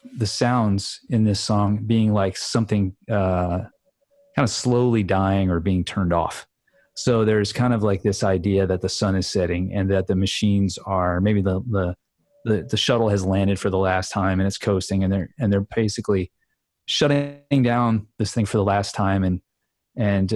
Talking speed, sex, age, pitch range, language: 190 wpm, male, 30-49, 95-115 Hz, English